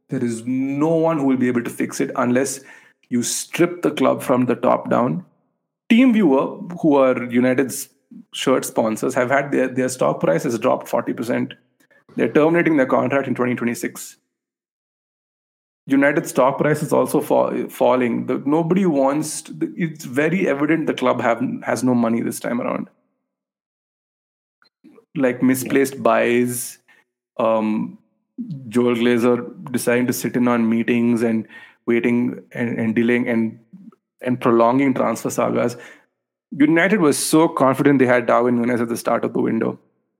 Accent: Indian